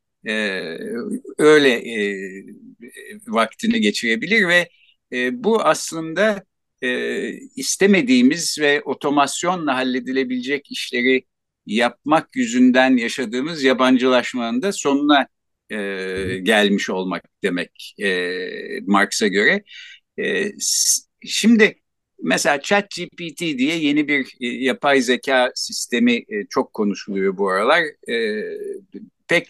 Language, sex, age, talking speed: Turkish, male, 60-79, 95 wpm